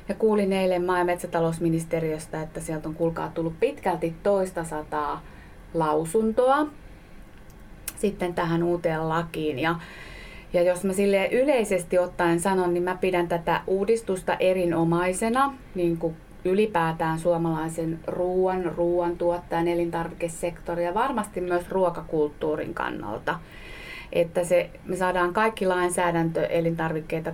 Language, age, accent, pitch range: Finnish, 30-49, native, 165-190 Hz